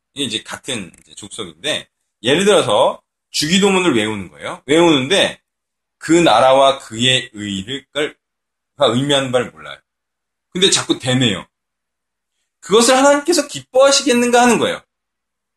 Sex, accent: male, native